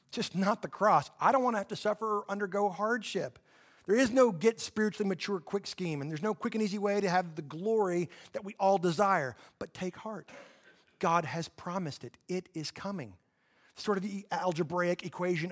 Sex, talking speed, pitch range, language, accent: male, 200 wpm, 160-210 Hz, English, American